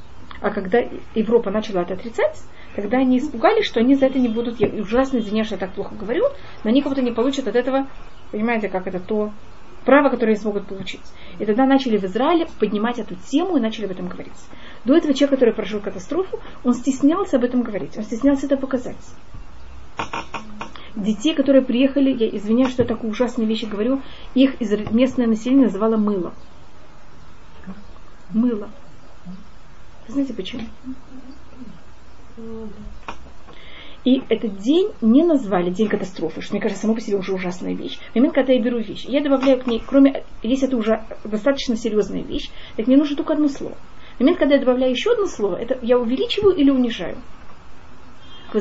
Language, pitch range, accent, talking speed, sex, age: Russian, 215-270 Hz, native, 175 wpm, female, 30-49